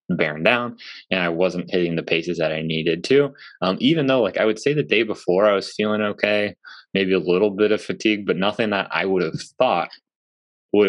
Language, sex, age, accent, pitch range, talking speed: English, male, 20-39, American, 85-100 Hz, 220 wpm